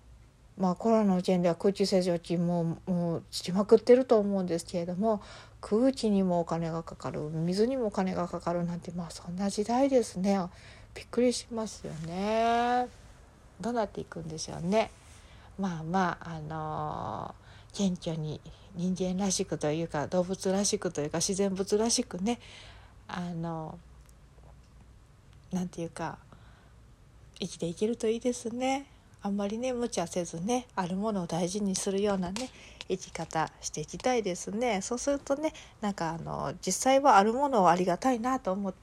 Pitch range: 170-225 Hz